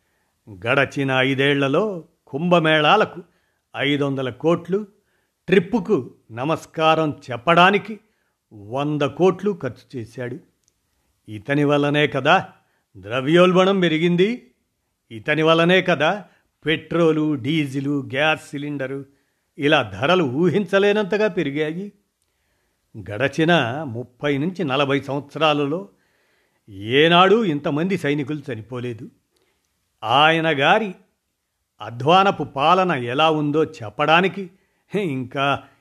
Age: 50-69